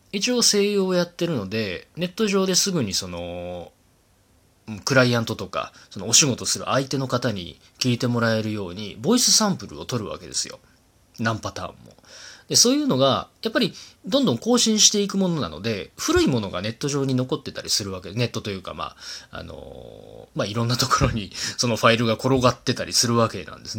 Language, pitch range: Japanese, 105-170 Hz